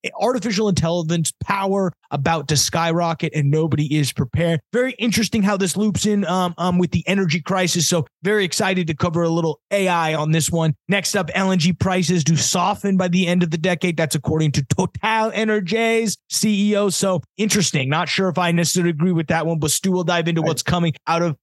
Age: 20-39